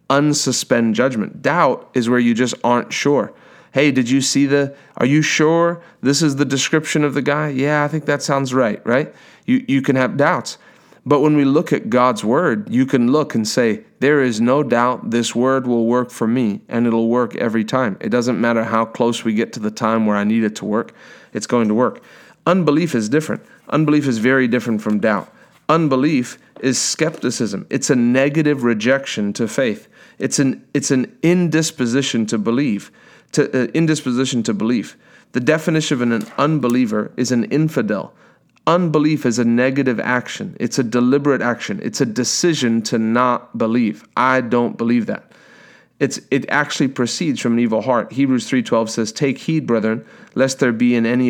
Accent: American